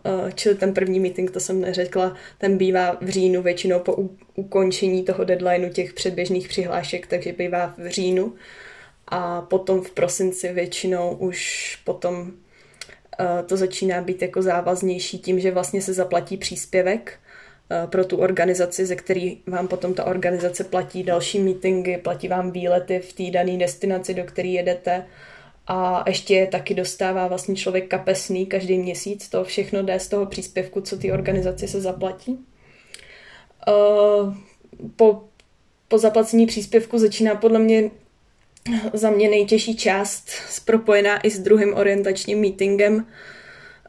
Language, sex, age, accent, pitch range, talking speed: Czech, female, 10-29, native, 185-200 Hz, 140 wpm